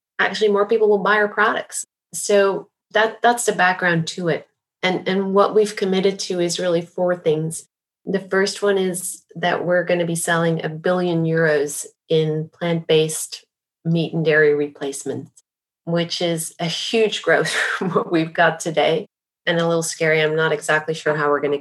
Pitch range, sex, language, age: 155-180 Hz, female, English, 30-49